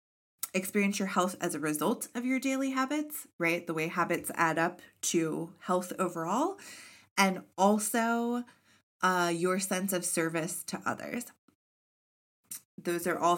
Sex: female